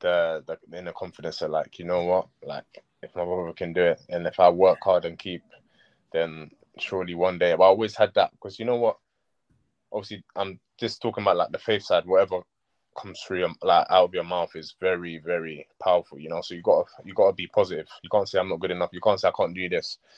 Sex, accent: male, British